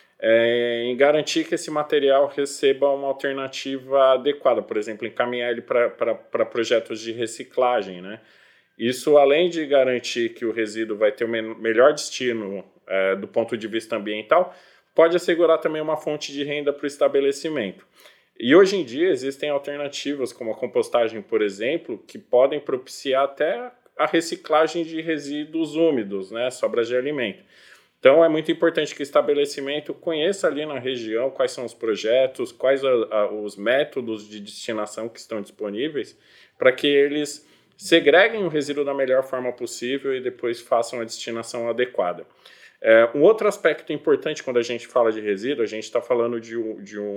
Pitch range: 115-150 Hz